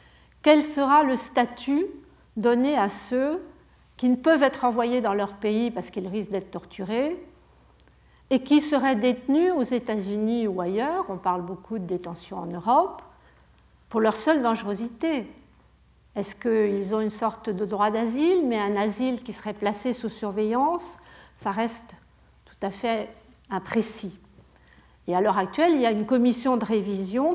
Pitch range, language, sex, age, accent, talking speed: 200-280 Hz, French, female, 50-69, French, 160 wpm